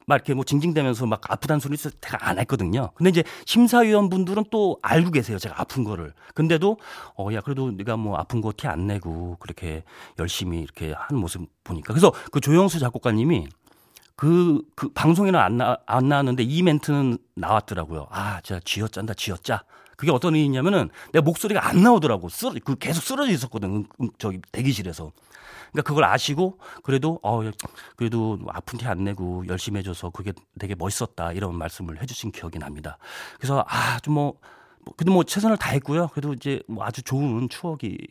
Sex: male